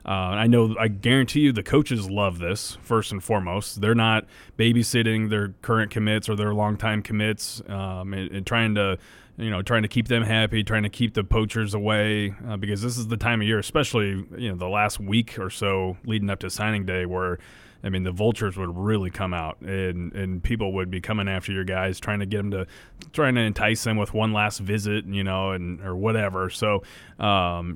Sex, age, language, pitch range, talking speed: male, 30-49, English, 100-115 Hz, 215 wpm